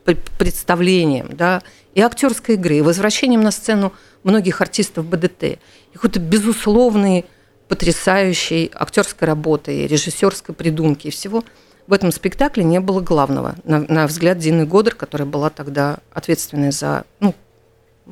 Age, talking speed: 50-69, 130 wpm